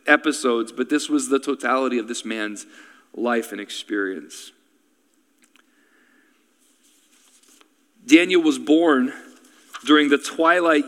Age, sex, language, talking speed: 40-59, male, English, 100 wpm